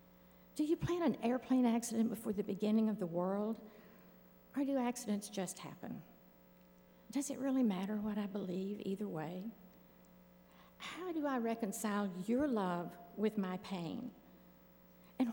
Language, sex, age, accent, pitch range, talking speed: English, female, 60-79, American, 170-220 Hz, 140 wpm